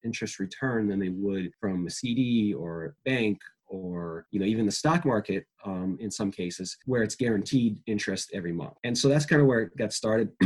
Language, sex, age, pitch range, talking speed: English, male, 30-49, 100-125 Hz, 205 wpm